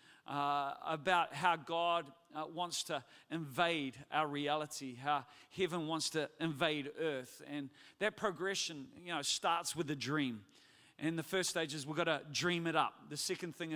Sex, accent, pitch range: male, Australian, 150-175 Hz